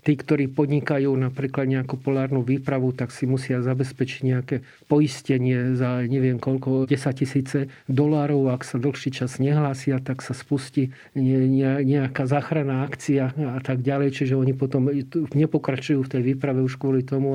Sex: male